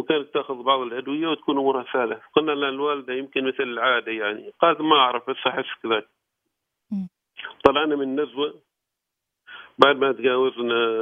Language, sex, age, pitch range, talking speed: Arabic, male, 50-69, 130-150 Hz, 135 wpm